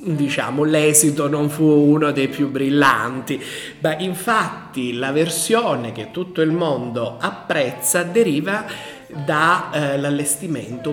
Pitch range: 125-175 Hz